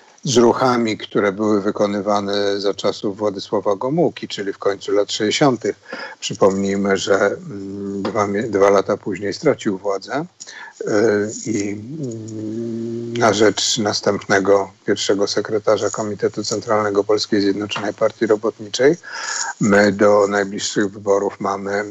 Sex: male